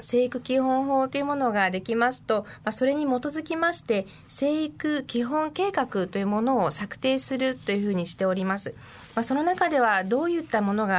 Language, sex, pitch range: Japanese, female, 195-285 Hz